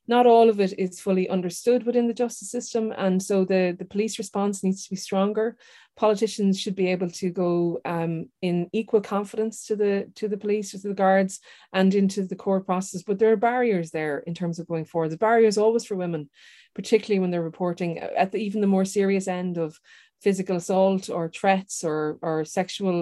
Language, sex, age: English, female, 30-49